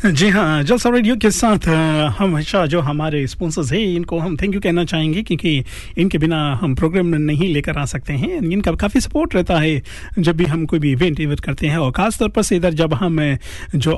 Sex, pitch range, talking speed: male, 150-210 Hz, 210 wpm